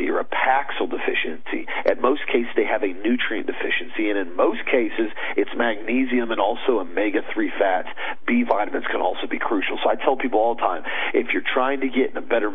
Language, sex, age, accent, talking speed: English, male, 40-59, American, 210 wpm